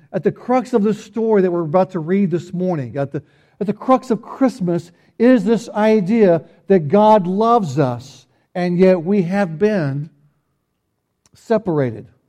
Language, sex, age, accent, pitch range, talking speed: English, male, 60-79, American, 145-195 Hz, 155 wpm